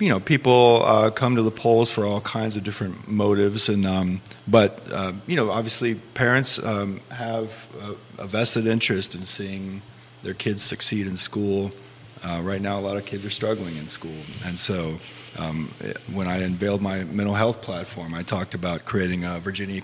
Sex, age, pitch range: male, 30-49, 90-110 Hz